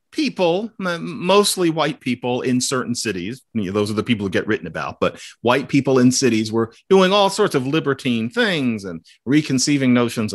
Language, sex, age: English, male, 40-59